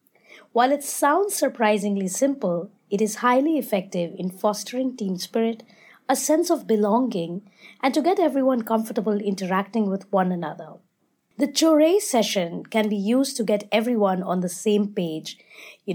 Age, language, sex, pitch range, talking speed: 20-39, English, female, 195-245 Hz, 150 wpm